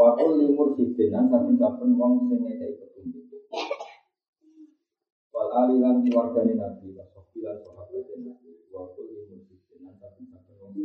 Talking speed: 65 wpm